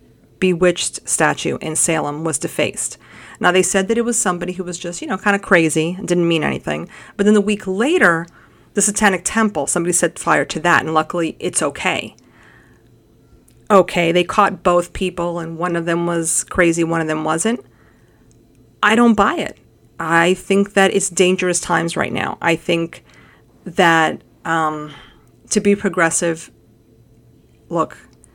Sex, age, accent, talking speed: female, 40-59, American, 165 wpm